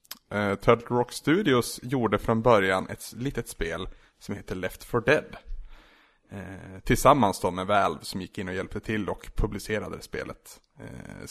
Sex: male